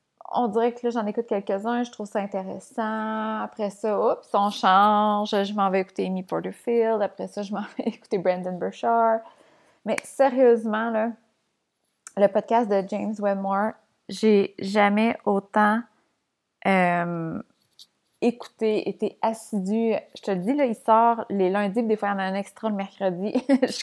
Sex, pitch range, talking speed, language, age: female, 195-230 Hz, 160 wpm, French, 20-39